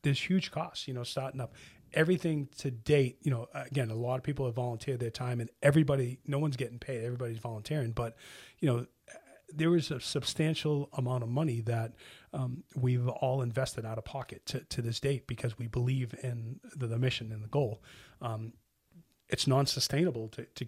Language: English